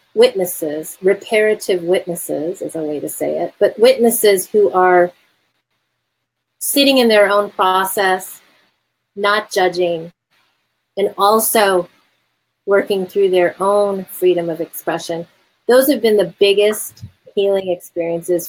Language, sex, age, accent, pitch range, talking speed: English, female, 30-49, American, 170-195 Hz, 115 wpm